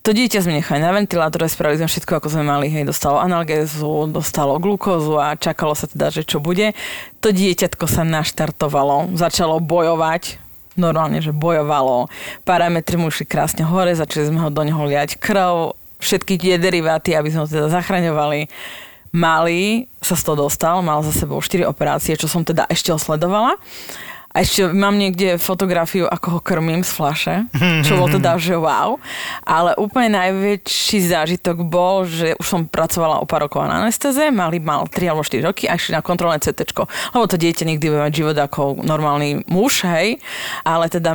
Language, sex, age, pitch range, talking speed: Slovak, female, 20-39, 155-180 Hz, 175 wpm